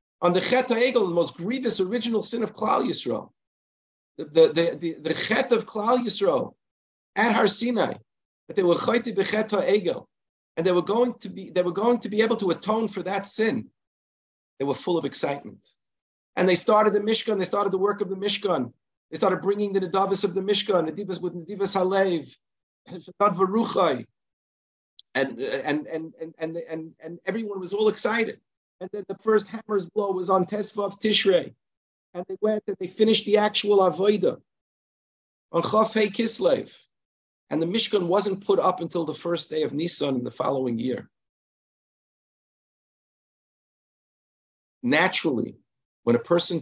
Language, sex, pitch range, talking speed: English, male, 150-210 Hz, 155 wpm